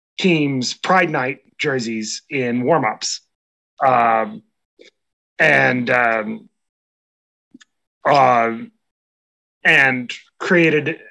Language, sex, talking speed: English, male, 60 wpm